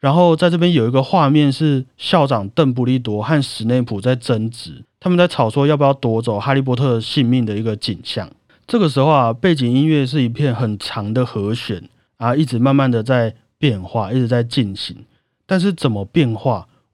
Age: 30-49